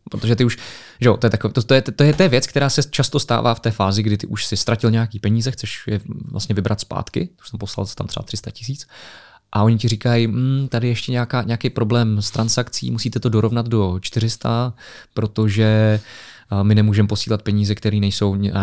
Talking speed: 215 wpm